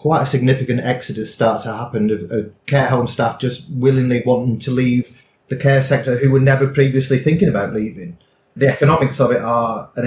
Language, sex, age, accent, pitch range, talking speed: English, male, 30-49, British, 115-130 Hz, 195 wpm